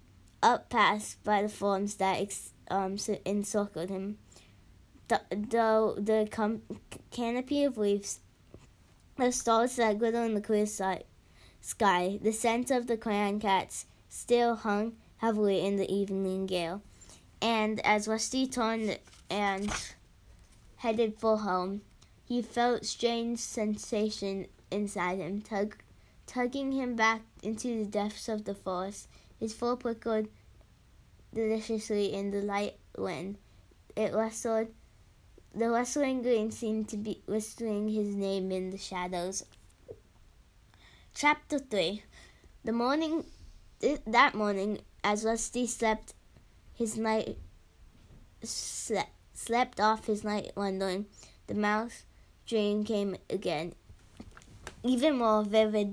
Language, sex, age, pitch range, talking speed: English, female, 10-29, 195-225 Hz, 120 wpm